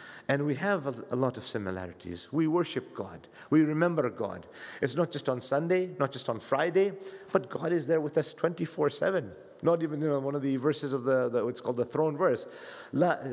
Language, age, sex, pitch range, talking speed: English, 50-69, male, 105-150 Hz, 205 wpm